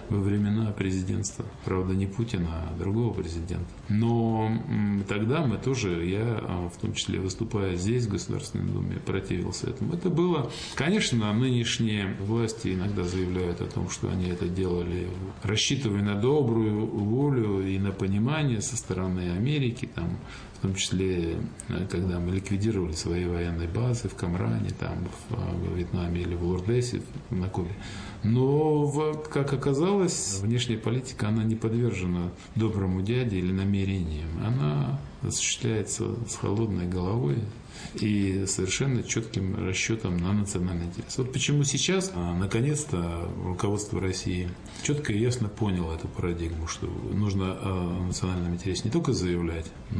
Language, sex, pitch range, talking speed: Russian, male, 90-115 Hz, 135 wpm